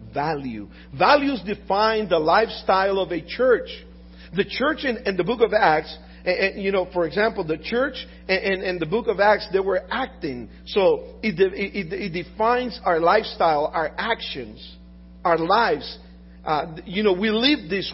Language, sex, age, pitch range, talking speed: English, male, 50-69, 175-225 Hz, 165 wpm